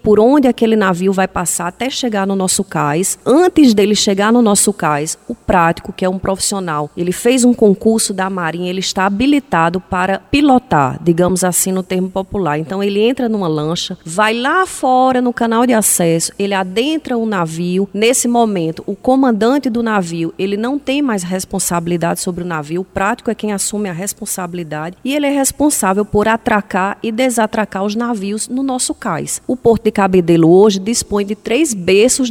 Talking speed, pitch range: 180 wpm, 185-235 Hz